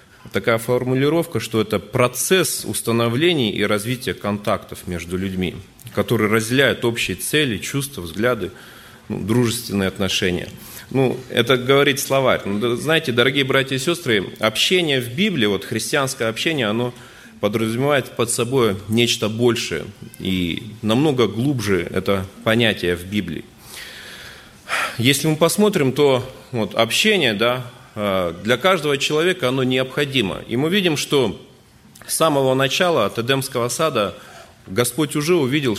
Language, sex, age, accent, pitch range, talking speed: Russian, male, 30-49, native, 100-130 Hz, 120 wpm